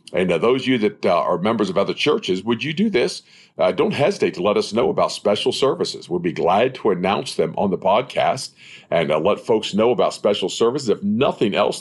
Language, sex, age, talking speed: English, male, 50-69, 235 wpm